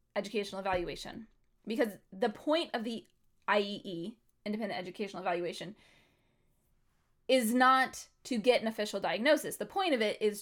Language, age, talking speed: English, 20-39, 130 wpm